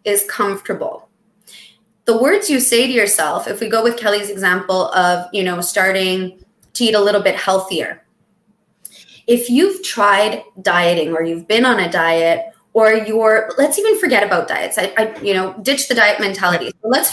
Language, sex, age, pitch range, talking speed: English, female, 20-39, 195-240 Hz, 180 wpm